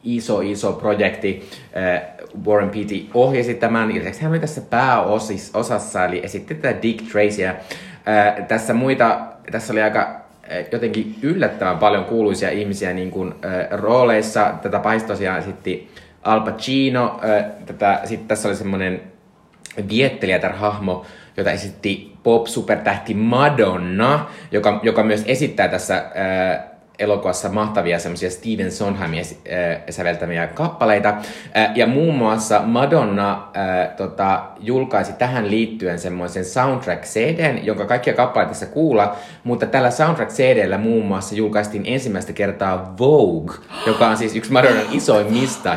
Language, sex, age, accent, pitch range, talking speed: Finnish, male, 20-39, native, 95-115 Hz, 125 wpm